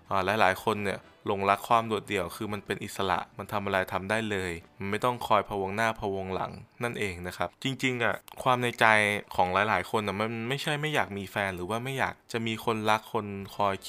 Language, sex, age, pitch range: Thai, male, 20-39, 100-120 Hz